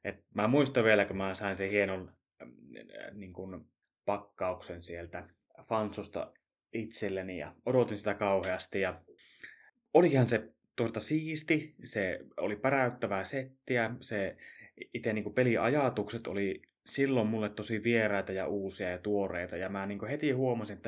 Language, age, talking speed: Finnish, 20-39, 140 wpm